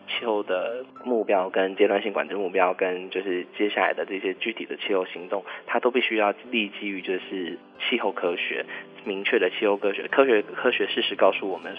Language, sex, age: Chinese, male, 20-39